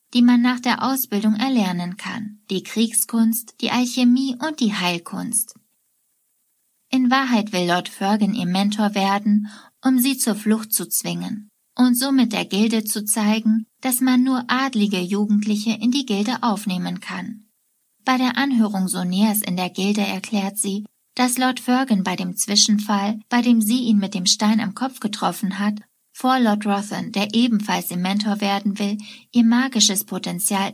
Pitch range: 200-245 Hz